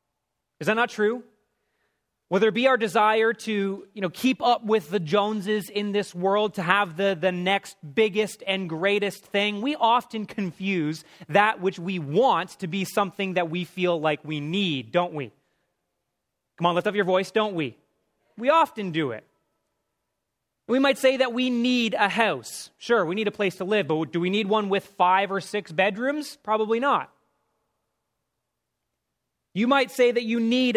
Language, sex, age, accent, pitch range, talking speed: English, male, 30-49, American, 170-220 Hz, 180 wpm